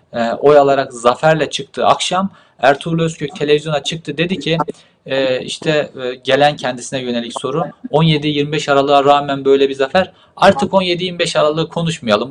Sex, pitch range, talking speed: male, 140-175 Hz, 125 wpm